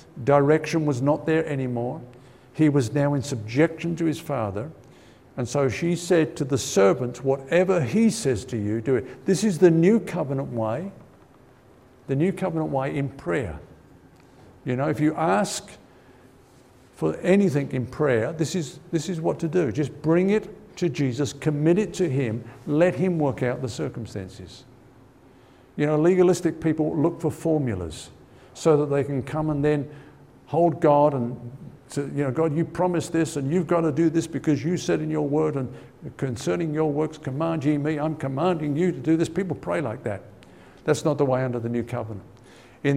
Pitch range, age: 125-160 Hz, 50-69